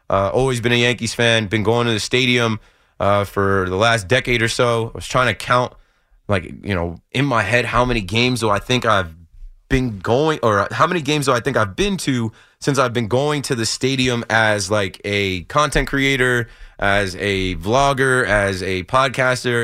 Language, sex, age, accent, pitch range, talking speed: English, male, 20-39, American, 100-125 Hz, 200 wpm